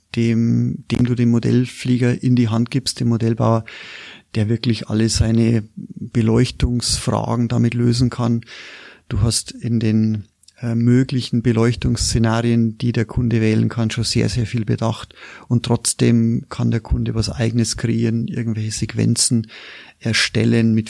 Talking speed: 140 wpm